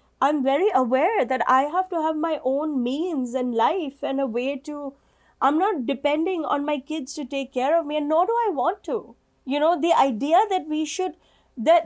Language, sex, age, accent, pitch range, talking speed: English, female, 20-39, Indian, 275-335 Hz, 210 wpm